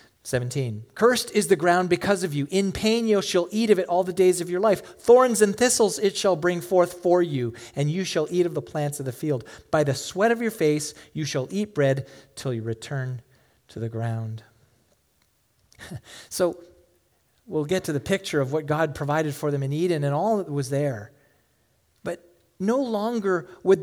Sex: male